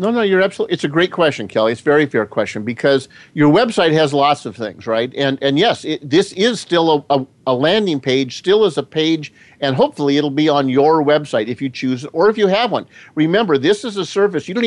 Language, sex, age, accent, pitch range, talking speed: English, male, 50-69, American, 135-185 Hz, 250 wpm